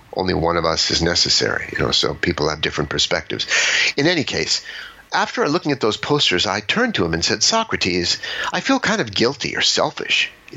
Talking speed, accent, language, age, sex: 205 wpm, American, English, 50-69, male